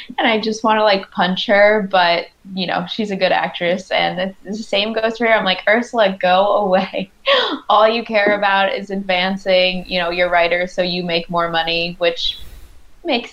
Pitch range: 165-200 Hz